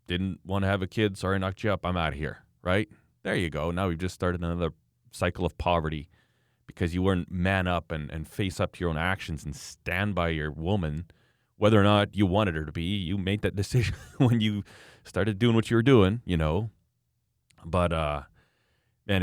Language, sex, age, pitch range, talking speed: English, male, 30-49, 85-110 Hz, 220 wpm